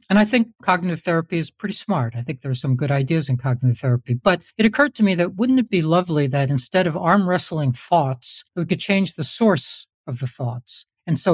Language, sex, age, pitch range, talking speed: English, male, 60-79, 130-180 Hz, 235 wpm